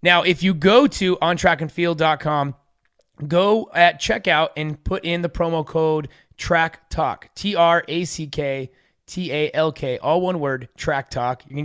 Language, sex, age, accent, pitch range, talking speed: English, male, 30-49, American, 150-185 Hz, 120 wpm